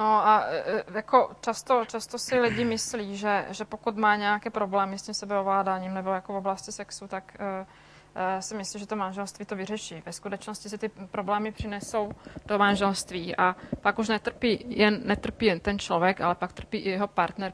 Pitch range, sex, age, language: 190-210 Hz, female, 20-39, Czech